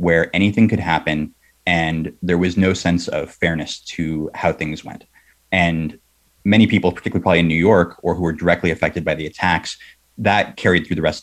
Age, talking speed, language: 30-49, 200 wpm, English